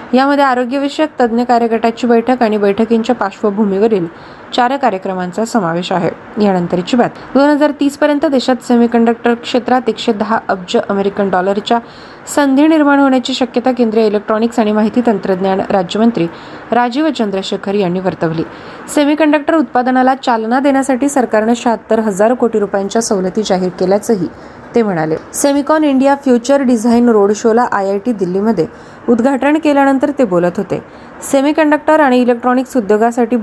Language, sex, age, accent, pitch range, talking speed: Marathi, female, 20-39, native, 210-265 Hz, 115 wpm